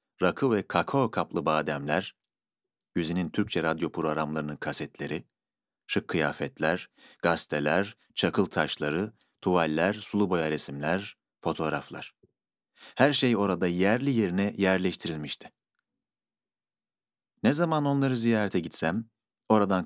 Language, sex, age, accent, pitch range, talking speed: Turkish, male, 40-59, native, 85-120 Hz, 95 wpm